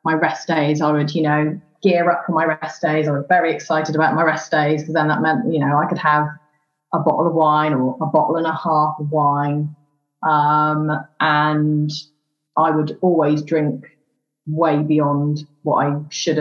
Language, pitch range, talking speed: English, 150-170 Hz, 195 wpm